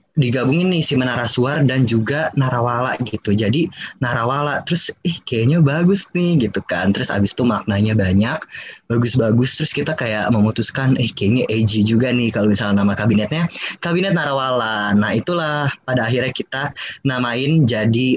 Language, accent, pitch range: Indonesian, native, 110-145 Hz